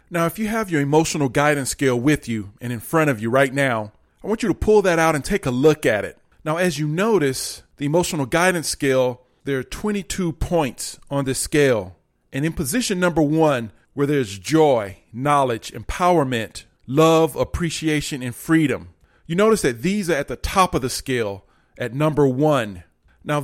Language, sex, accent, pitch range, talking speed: English, male, American, 130-170 Hz, 190 wpm